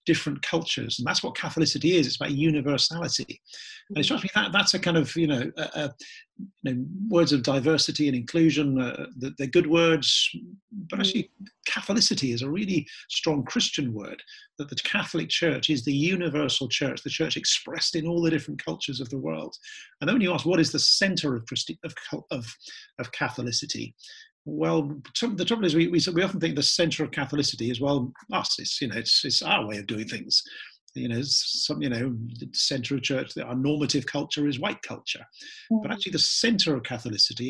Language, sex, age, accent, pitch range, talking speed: English, male, 50-69, British, 125-165 Hz, 195 wpm